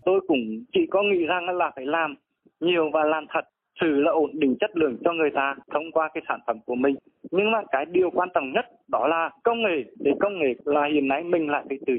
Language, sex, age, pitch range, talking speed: Vietnamese, male, 20-39, 140-190 Hz, 250 wpm